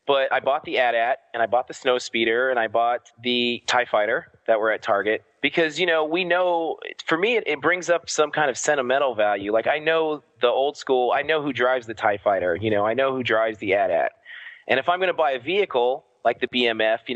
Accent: American